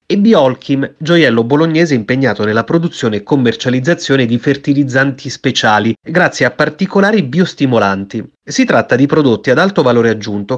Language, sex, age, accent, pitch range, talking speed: Italian, male, 30-49, native, 115-155 Hz, 135 wpm